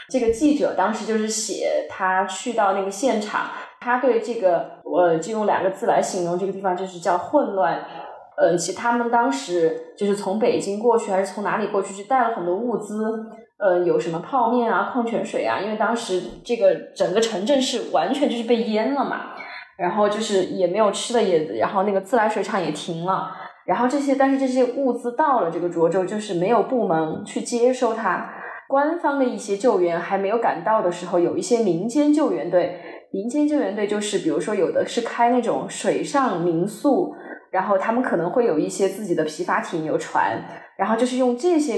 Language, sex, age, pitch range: Chinese, female, 20-39, 185-250 Hz